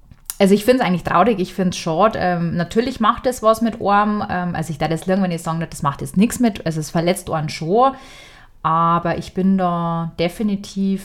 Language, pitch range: German, 170-200 Hz